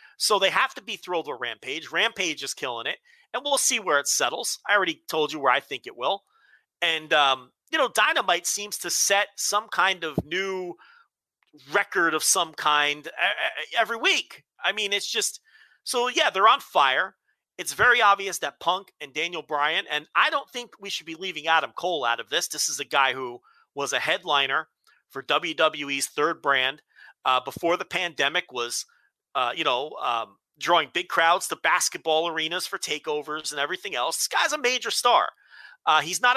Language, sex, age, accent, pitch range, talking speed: English, male, 40-59, American, 155-205 Hz, 190 wpm